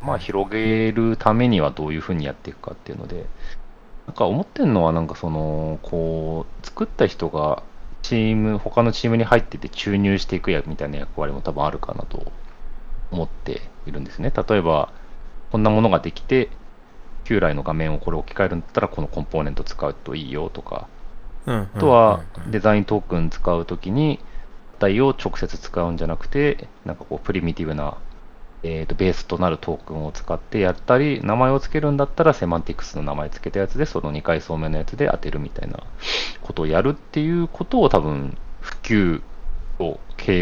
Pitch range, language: 80-110 Hz, Japanese